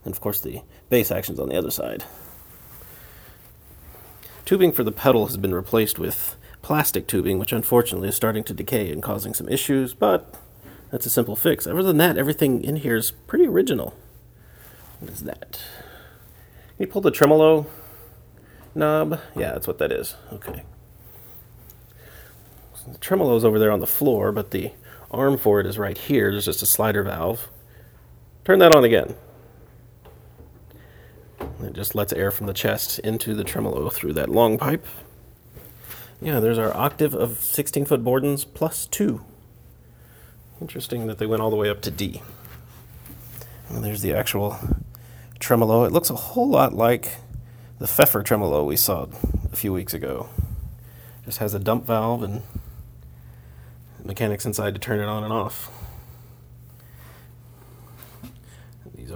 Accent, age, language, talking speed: American, 40-59, English, 155 wpm